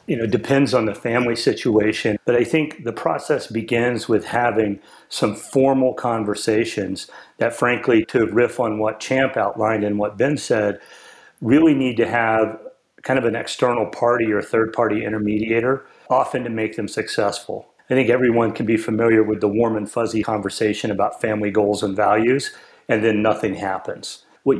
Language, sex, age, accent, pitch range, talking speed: English, male, 40-59, American, 105-120 Hz, 170 wpm